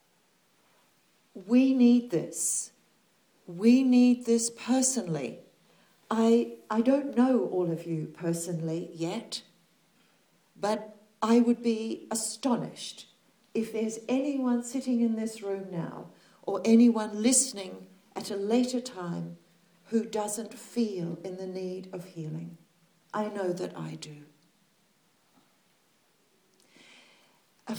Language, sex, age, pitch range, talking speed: English, female, 60-79, 180-225 Hz, 110 wpm